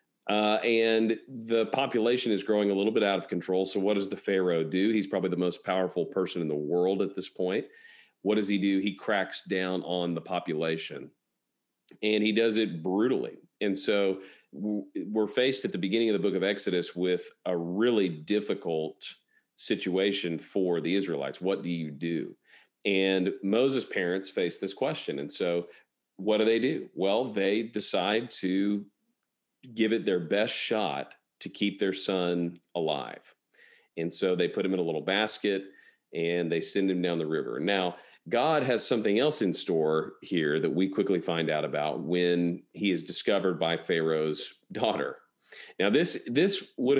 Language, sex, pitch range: English, male, 90-105 Hz